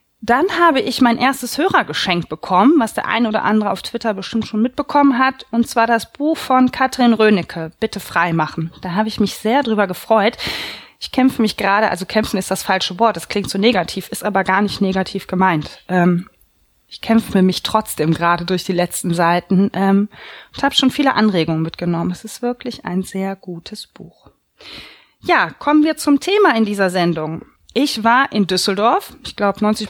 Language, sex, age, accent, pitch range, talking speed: German, female, 20-39, German, 190-250 Hz, 190 wpm